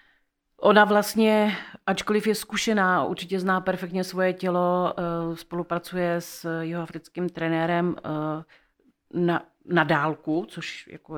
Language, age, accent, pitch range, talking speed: Czech, 40-59, native, 155-175 Hz, 105 wpm